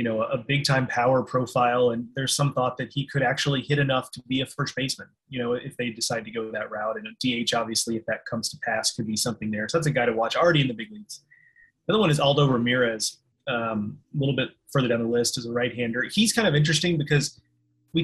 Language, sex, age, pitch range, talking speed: English, male, 30-49, 125-150 Hz, 255 wpm